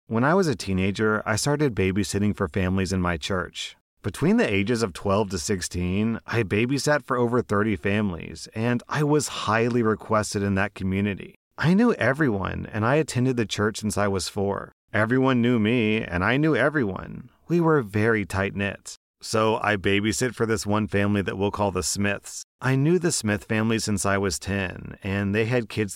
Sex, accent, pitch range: male, American, 100-120 Hz